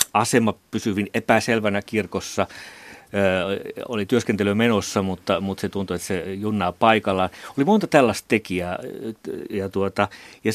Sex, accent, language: male, native, Finnish